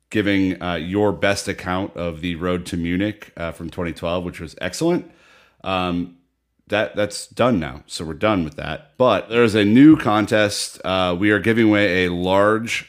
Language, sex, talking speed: English, male, 180 wpm